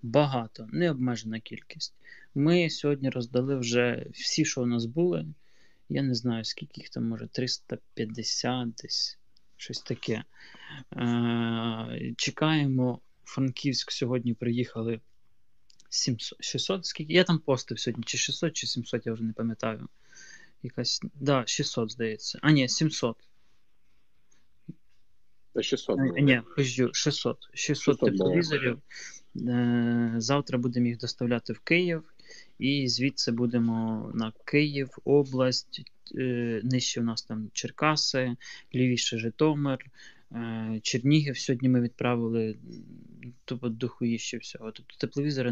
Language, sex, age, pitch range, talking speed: Ukrainian, male, 20-39, 115-140 Hz, 110 wpm